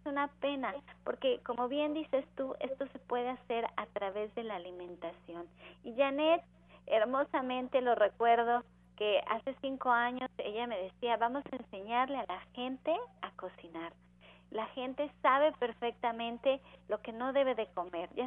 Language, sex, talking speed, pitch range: Spanish, female, 155 wpm, 215-270 Hz